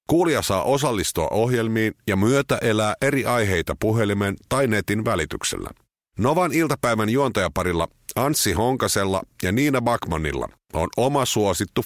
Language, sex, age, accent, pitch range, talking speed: Finnish, male, 50-69, native, 100-135 Hz, 120 wpm